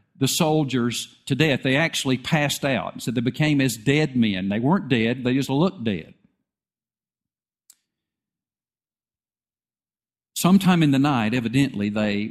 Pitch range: 115-150 Hz